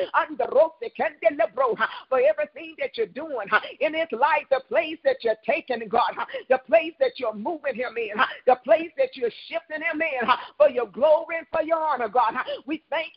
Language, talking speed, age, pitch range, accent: English, 190 wpm, 50-69, 260-330 Hz, American